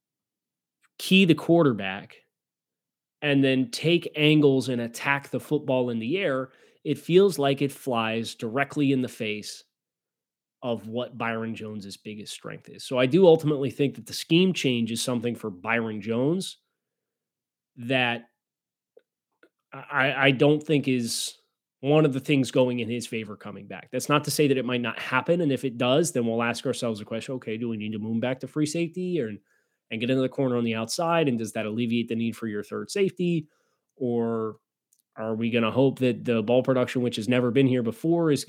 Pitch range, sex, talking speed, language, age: 115-150 Hz, male, 195 wpm, English, 30-49